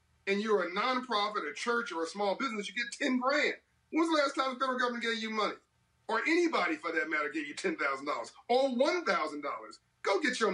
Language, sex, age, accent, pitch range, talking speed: English, male, 40-59, American, 180-245 Hz, 210 wpm